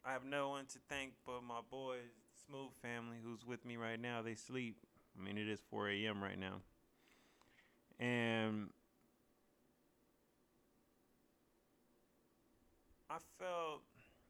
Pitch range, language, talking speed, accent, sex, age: 105-135 Hz, English, 120 wpm, American, male, 20-39